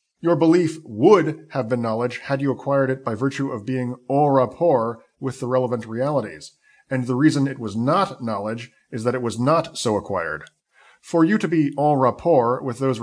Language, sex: English, male